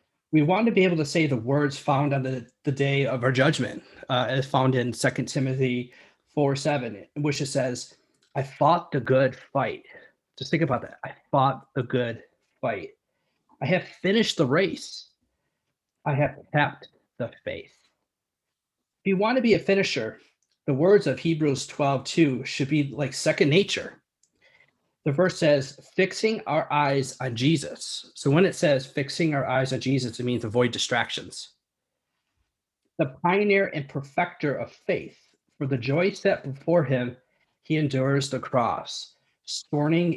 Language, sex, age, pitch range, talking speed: English, male, 30-49, 130-165 Hz, 160 wpm